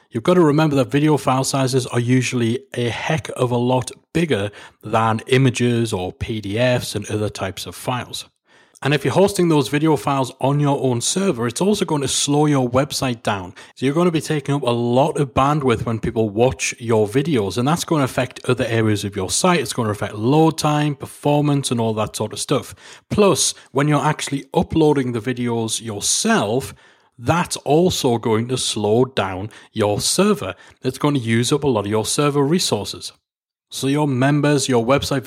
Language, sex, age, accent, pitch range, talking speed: English, male, 30-49, British, 110-145 Hz, 195 wpm